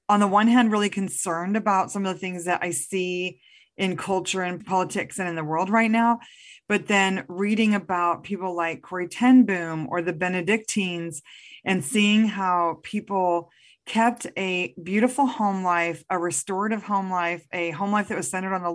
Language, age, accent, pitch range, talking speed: English, 30-49, American, 175-210 Hz, 180 wpm